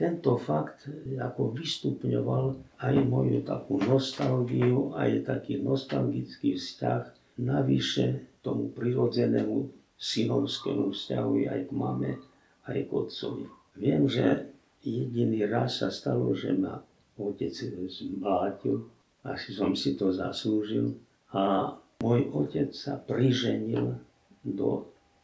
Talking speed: 105 wpm